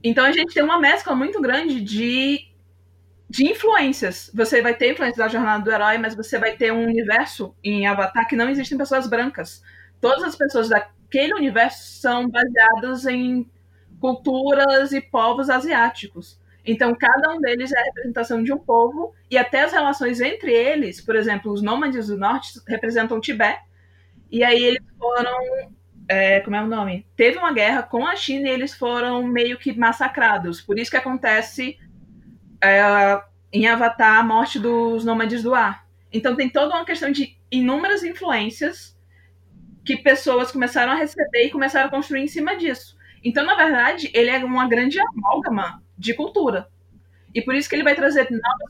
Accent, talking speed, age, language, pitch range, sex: Brazilian, 170 wpm, 20-39, Portuguese, 220-275 Hz, female